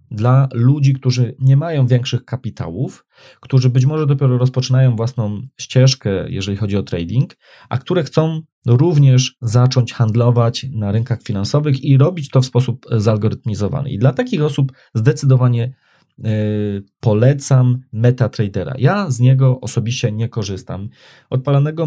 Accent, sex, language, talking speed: native, male, Polish, 130 wpm